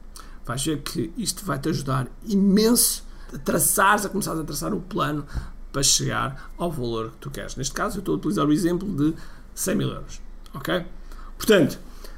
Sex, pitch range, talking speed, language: male, 140-200 Hz, 175 wpm, Portuguese